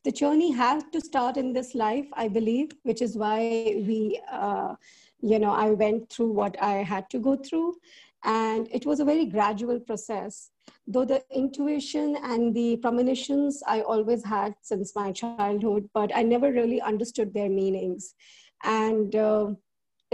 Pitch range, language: 210-245 Hz, English